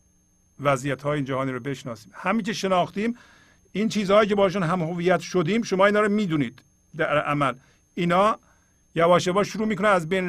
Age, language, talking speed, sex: 50-69, Persian, 150 wpm, male